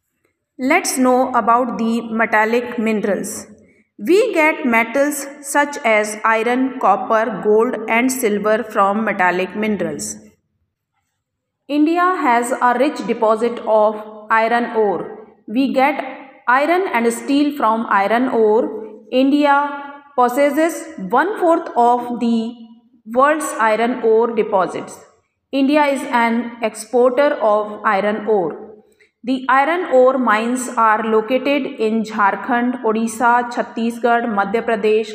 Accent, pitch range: Indian, 220-270 Hz